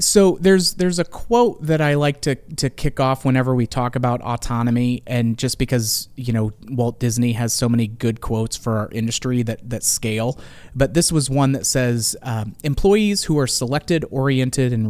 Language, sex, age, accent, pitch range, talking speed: English, male, 30-49, American, 120-145 Hz, 195 wpm